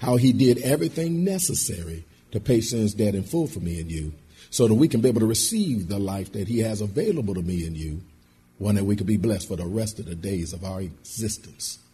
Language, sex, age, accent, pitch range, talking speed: English, male, 50-69, American, 85-110 Hz, 240 wpm